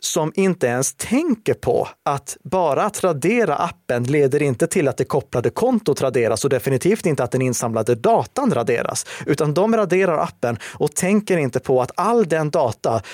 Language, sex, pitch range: Swedish, male, 130-180 Hz